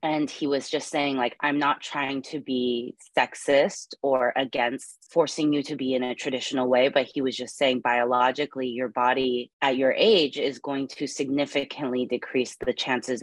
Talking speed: 180 wpm